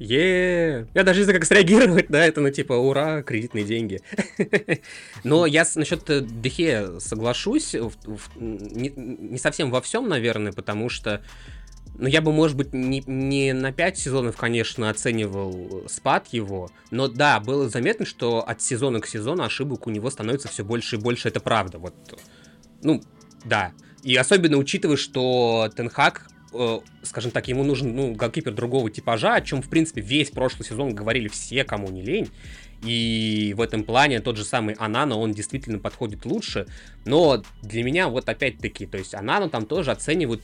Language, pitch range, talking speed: Russian, 110-150 Hz, 170 wpm